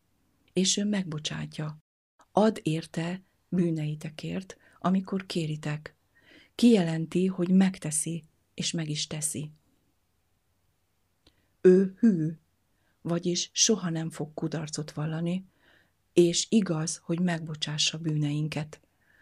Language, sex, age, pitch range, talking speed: Hungarian, female, 50-69, 150-180 Hz, 85 wpm